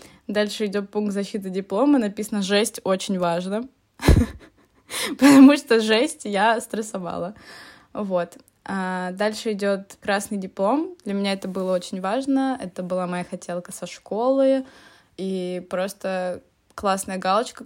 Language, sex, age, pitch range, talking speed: Russian, female, 20-39, 185-220 Hz, 120 wpm